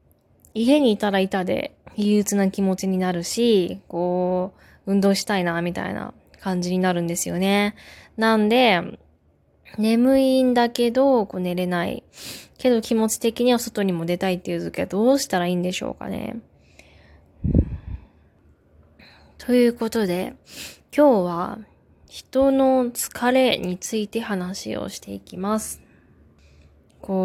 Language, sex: Japanese, female